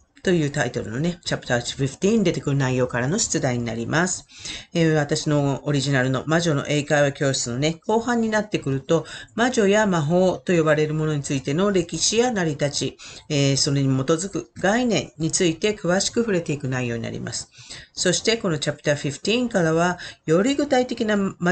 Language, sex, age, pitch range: Japanese, female, 40-59, 140-205 Hz